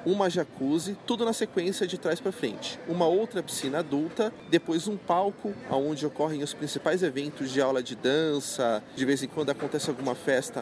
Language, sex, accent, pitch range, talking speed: Portuguese, male, Brazilian, 140-190 Hz, 180 wpm